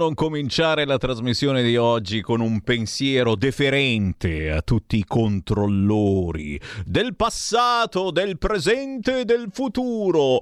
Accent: native